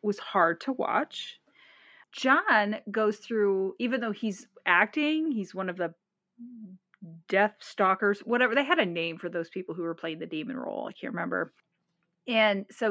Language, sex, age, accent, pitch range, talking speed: English, female, 30-49, American, 185-240 Hz, 165 wpm